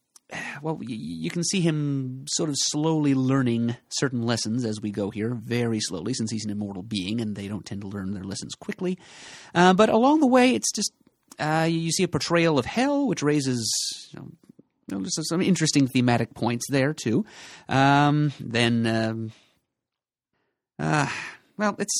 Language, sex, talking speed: English, male, 150 wpm